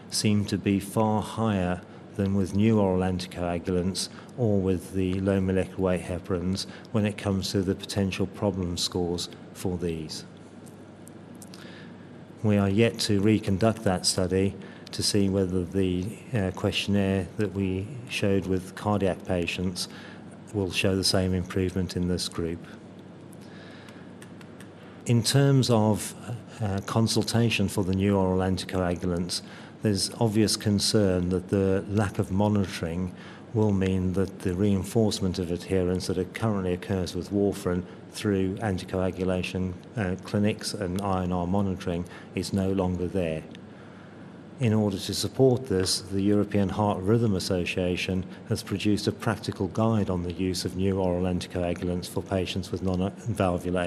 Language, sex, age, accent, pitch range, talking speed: English, male, 40-59, British, 90-105 Hz, 135 wpm